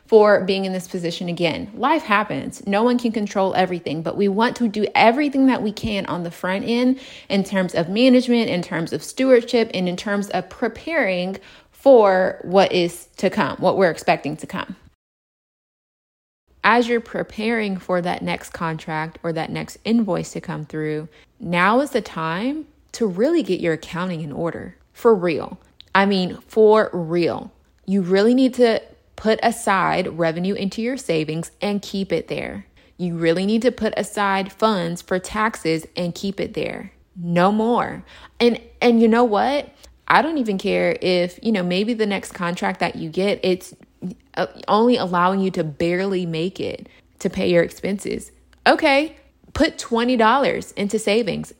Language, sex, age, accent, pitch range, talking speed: English, female, 20-39, American, 175-235 Hz, 170 wpm